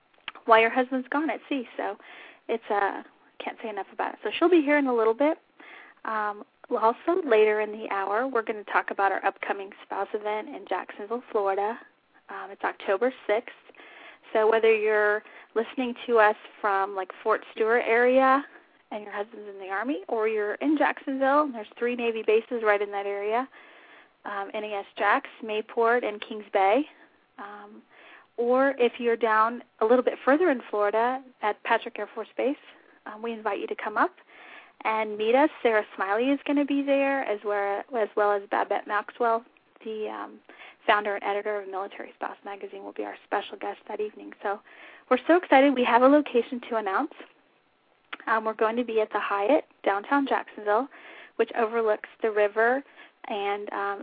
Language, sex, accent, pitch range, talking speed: English, female, American, 210-260 Hz, 185 wpm